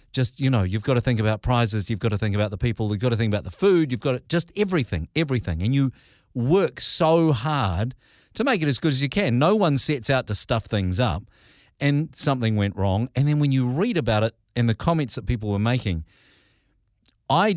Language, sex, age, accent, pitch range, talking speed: English, male, 40-59, Australian, 105-135 Hz, 230 wpm